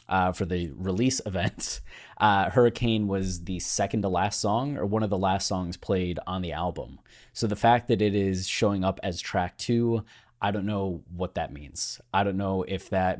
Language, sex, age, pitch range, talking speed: English, male, 20-39, 95-115 Hz, 205 wpm